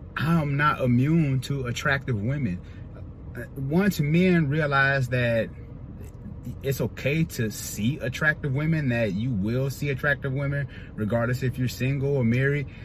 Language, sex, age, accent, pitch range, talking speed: English, male, 30-49, American, 95-125 Hz, 130 wpm